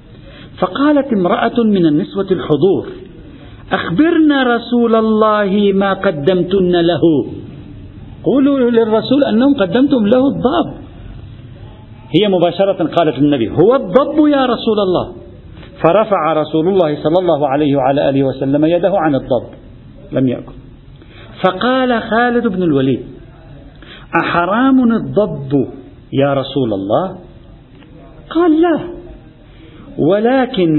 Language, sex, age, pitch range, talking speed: Arabic, male, 50-69, 140-230 Hz, 100 wpm